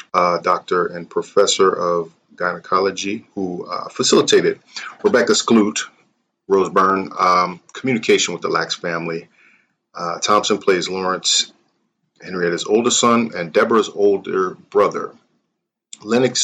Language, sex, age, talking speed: English, male, 30-49, 115 wpm